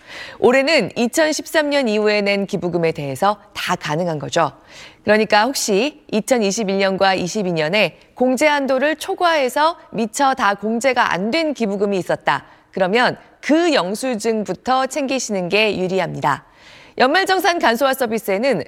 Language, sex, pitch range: Korean, female, 195-285 Hz